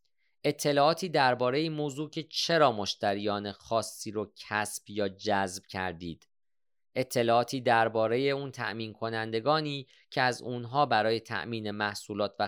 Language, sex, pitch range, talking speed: Persian, male, 105-135 Hz, 120 wpm